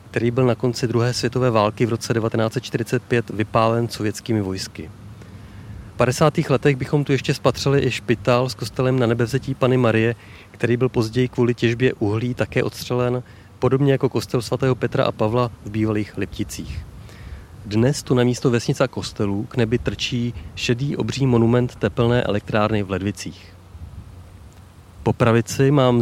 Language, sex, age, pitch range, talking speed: Czech, male, 30-49, 105-125 Hz, 150 wpm